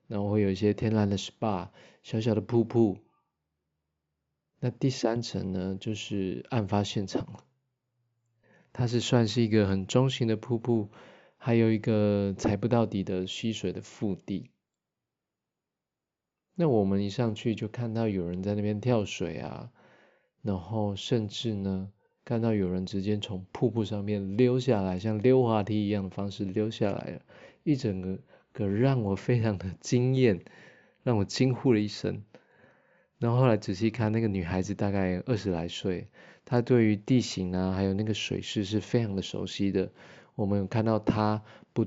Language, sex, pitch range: Chinese, male, 100-120 Hz